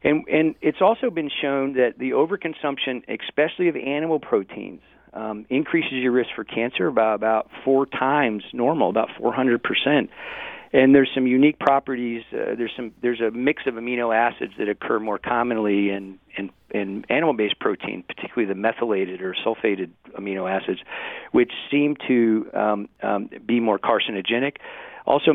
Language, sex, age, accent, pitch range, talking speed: English, male, 40-59, American, 105-135 Hz, 155 wpm